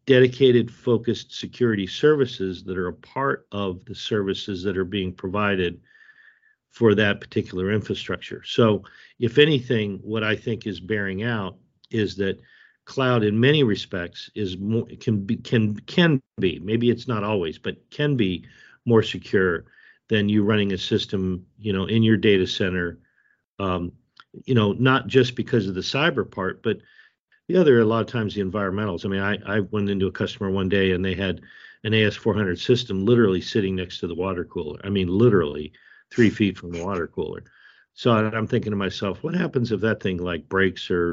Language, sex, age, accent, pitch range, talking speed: English, male, 50-69, American, 95-115 Hz, 180 wpm